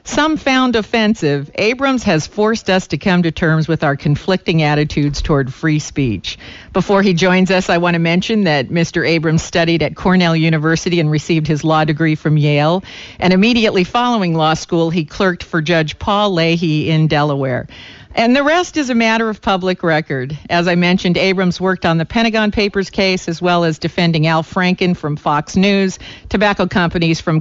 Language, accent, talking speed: English, American, 185 wpm